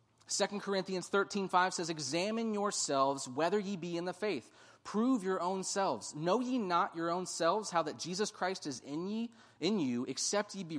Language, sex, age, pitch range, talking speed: English, male, 30-49, 115-155 Hz, 195 wpm